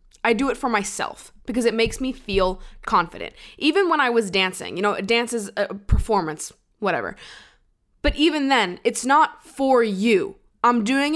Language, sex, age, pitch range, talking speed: English, female, 20-39, 180-230 Hz, 175 wpm